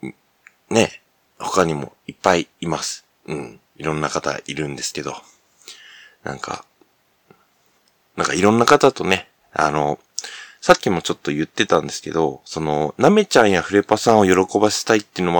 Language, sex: Japanese, male